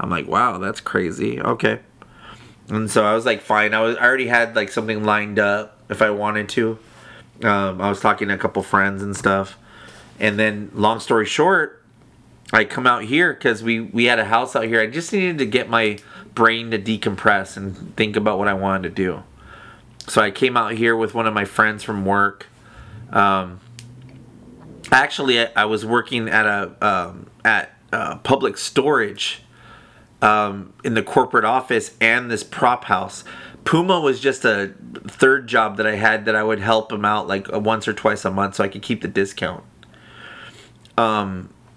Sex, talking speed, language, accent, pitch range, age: male, 190 wpm, English, American, 105-115 Hz, 30-49